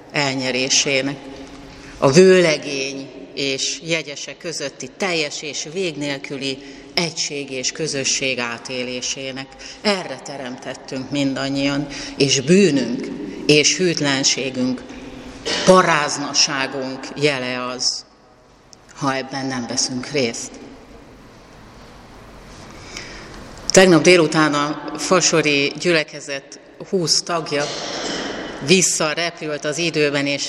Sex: female